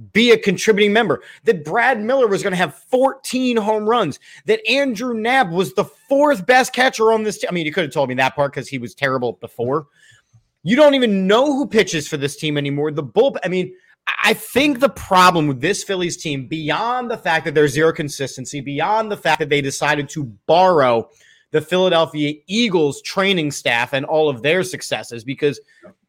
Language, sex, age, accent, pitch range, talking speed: English, male, 30-49, American, 150-220 Hz, 200 wpm